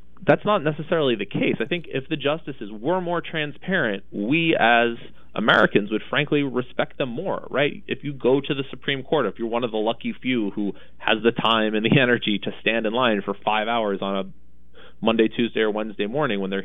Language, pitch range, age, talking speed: English, 95-140 Hz, 20-39, 215 wpm